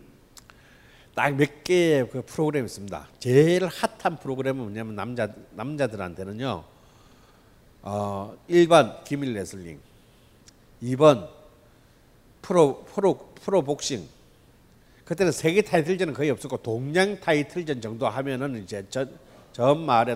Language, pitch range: Korean, 110-170 Hz